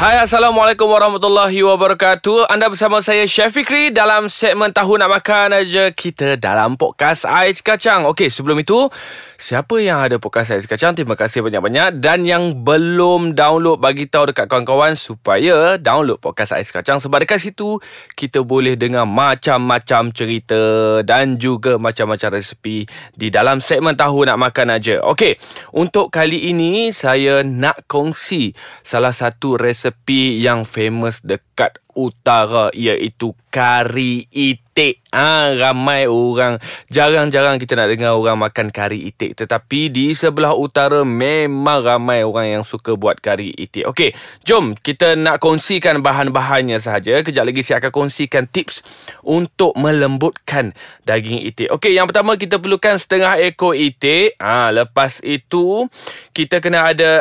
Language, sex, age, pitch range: Malay, male, 20-39, 125-180 Hz